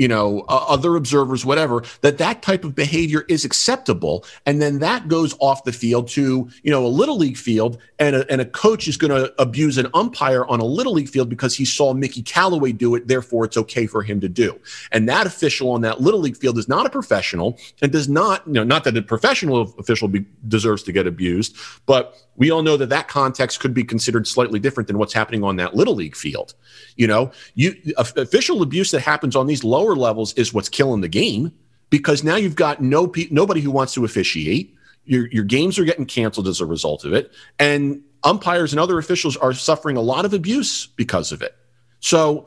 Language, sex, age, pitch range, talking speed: English, male, 40-59, 120-155 Hz, 220 wpm